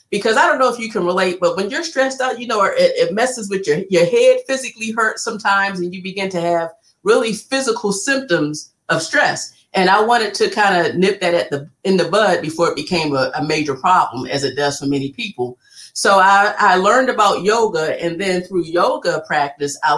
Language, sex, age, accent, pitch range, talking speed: English, female, 30-49, American, 155-200 Hz, 220 wpm